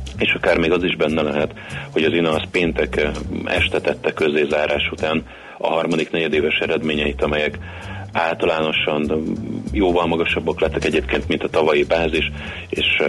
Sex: male